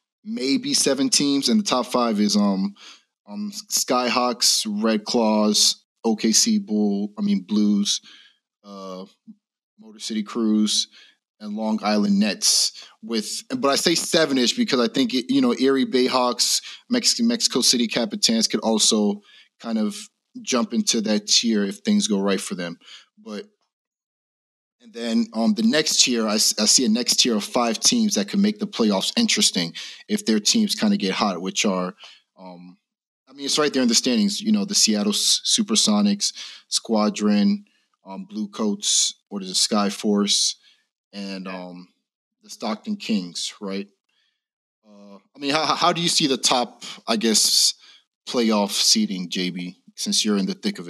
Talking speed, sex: 165 wpm, male